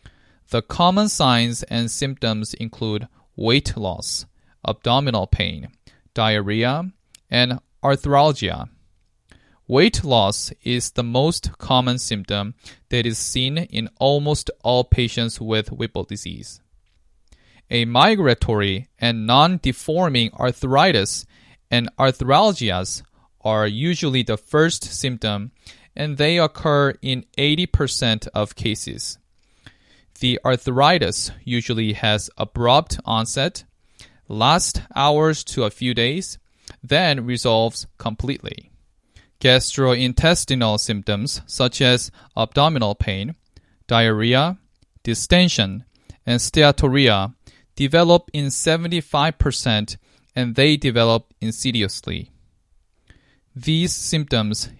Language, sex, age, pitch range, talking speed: English, male, 20-39, 105-135 Hz, 90 wpm